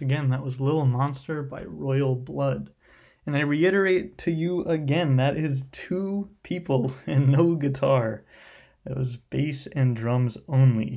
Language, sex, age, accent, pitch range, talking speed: English, male, 20-39, American, 120-145 Hz, 150 wpm